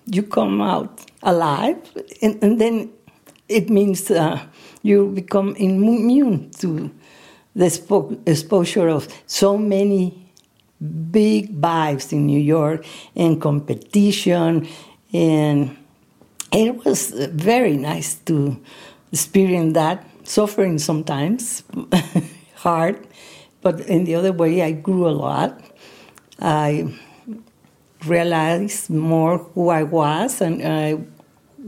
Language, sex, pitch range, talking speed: English, female, 160-205 Hz, 100 wpm